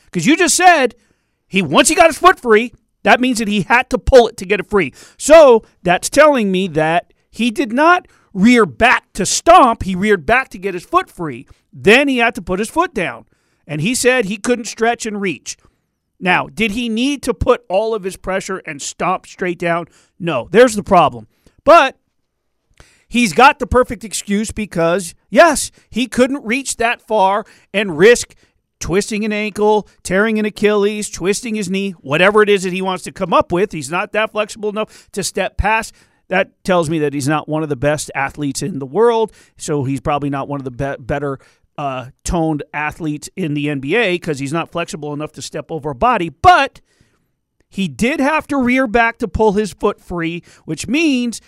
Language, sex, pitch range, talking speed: English, male, 170-235 Hz, 200 wpm